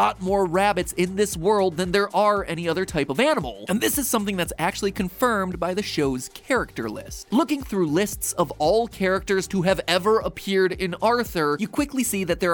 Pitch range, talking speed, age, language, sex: 155-205 Hz, 200 wpm, 20-39, English, male